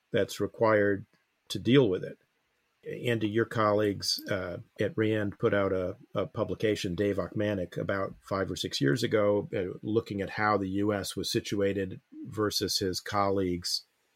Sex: male